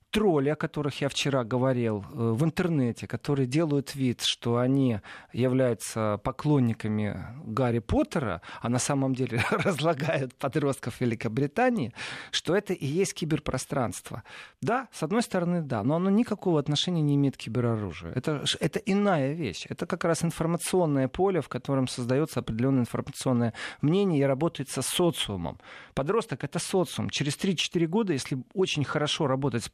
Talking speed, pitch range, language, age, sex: 145 wpm, 130-175 Hz, Russian, 40-59, male